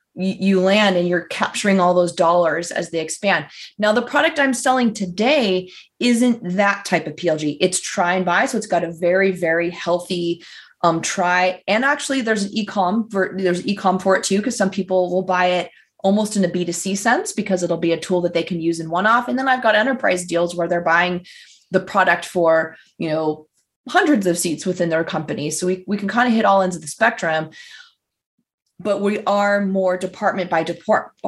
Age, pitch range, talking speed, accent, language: 20-39, 175-215 Hz, 205 wpm, American, English